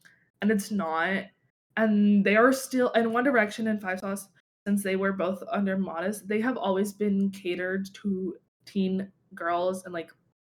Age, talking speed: 20-39, 165 wpm